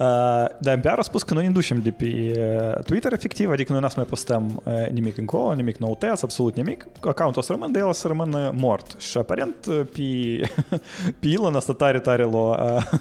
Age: 20-39